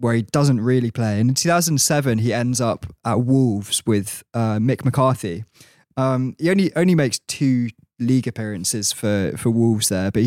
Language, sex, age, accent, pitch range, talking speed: English, male, 20-39, British, 110-130 Hz, 175 wpm